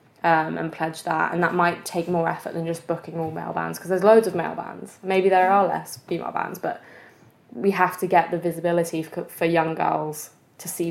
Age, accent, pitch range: 20-39, British, 155-175 Hz